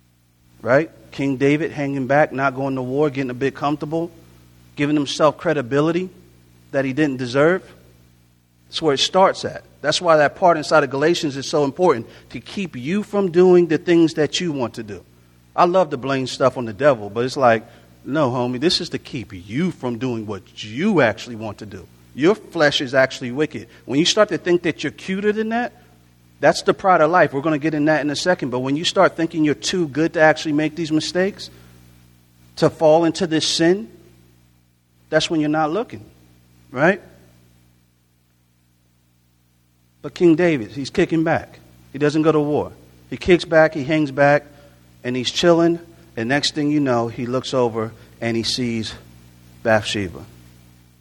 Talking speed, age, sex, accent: 185 wpm, 40-59, male, American